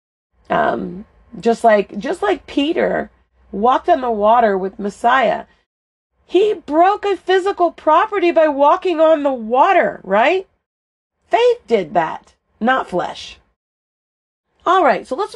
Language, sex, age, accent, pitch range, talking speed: English, female, 40-59, American, 175-290 Hz, 125 wpm